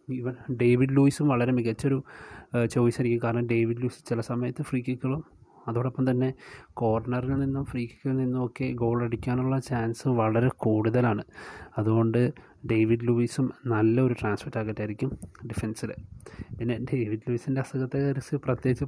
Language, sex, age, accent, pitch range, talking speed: Malayalam, male, 30-49, native, 115-135 Hz, 115 wpm